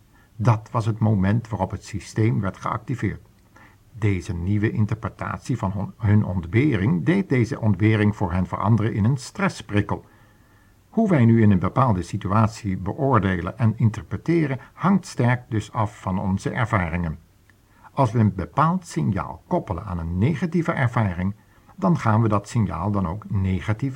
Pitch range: 100-125 Hz